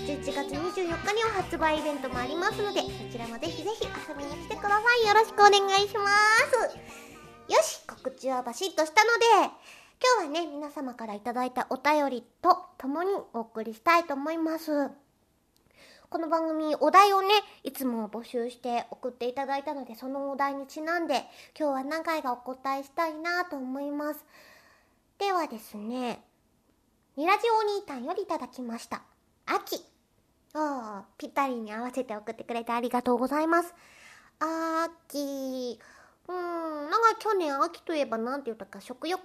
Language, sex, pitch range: Japanese, male, 250-340 Hz